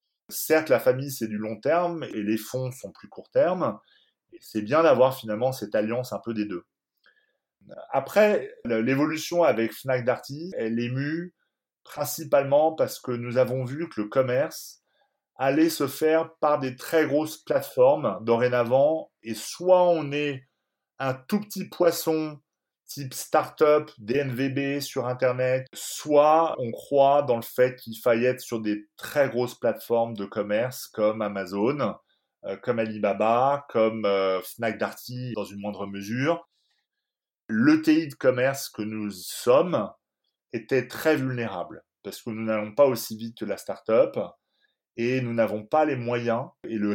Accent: French